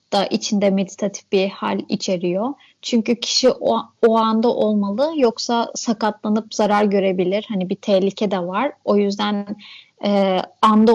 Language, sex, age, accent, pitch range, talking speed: Turkish, female, 30-49, native, 205-255 Hz, 135 wpm